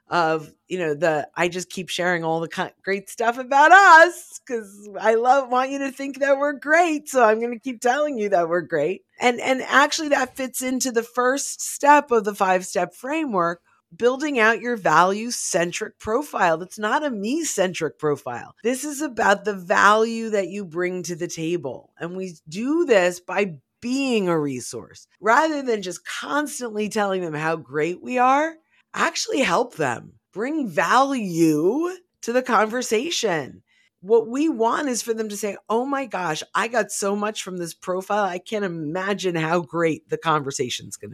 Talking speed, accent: 180 wpm, American